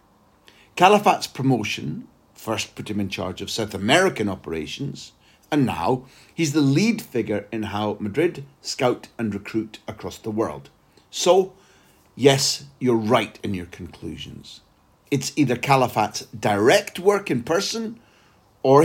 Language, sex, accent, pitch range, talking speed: English, male, British, 100-145 Hz, 130 wpm